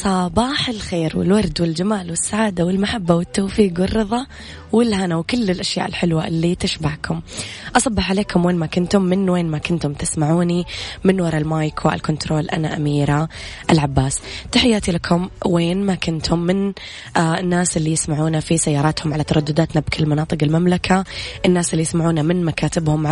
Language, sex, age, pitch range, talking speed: Arabic, female, 20-39, 155-185 Hz, 135 wpm